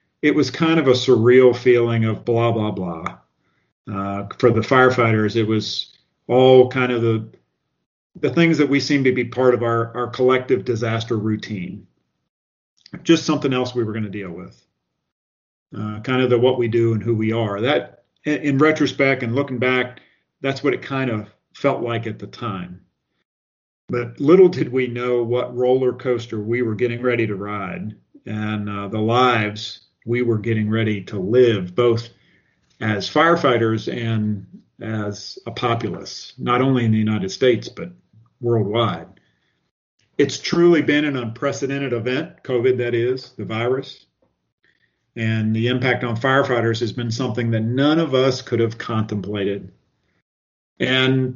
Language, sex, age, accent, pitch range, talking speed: English, male, 40-59, American, 110-130 Hz, 160 wpm